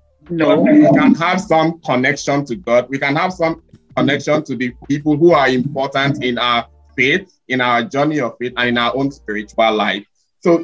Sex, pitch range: male, 120-165 Hz